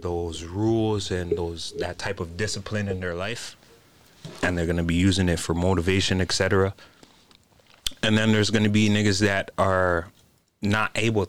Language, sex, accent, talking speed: English, male, American, 170 wpm